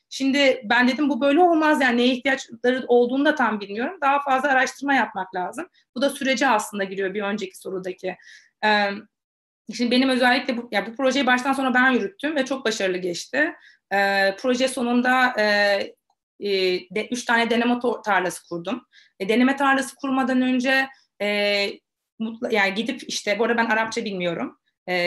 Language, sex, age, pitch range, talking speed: Turkish, female, 30-49, 200-260 Hz, 145 wpm